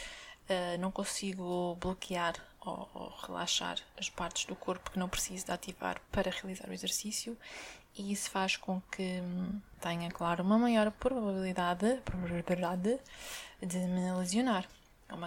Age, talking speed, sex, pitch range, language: 20-39, 140 wpm, female, 180-205 Hz, Portuguese